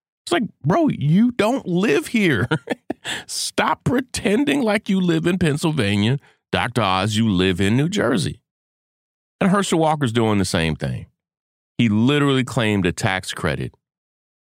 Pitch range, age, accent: 95-130 Hz, 40-59, American